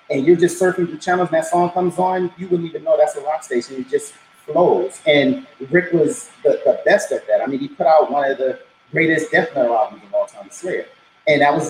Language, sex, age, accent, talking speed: English, male, 30-49, American, 250 wpm